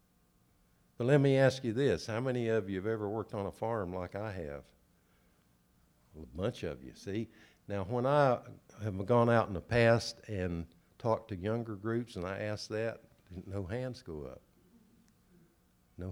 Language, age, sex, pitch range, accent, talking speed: English, 60-79, male, 85-110 Hz, American, 175 wpm